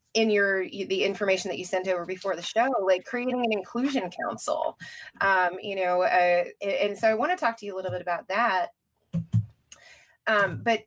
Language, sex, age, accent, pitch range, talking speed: English, female, 20-39, American, 180-230 Hz, 190 wpm